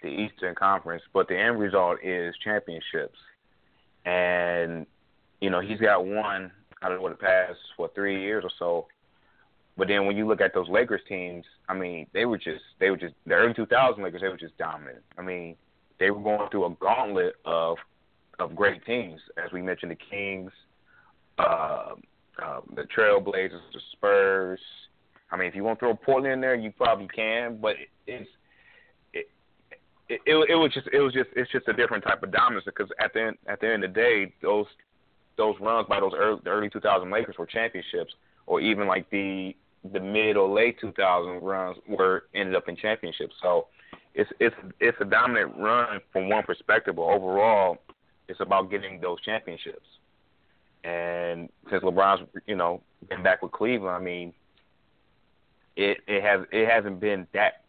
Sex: male